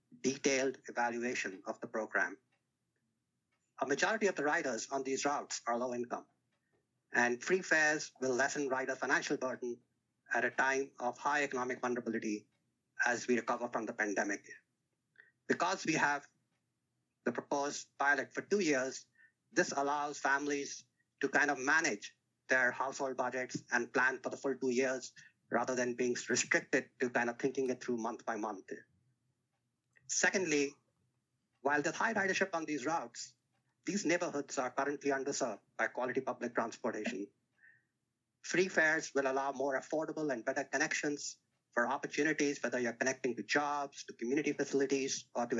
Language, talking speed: English, 150 wpm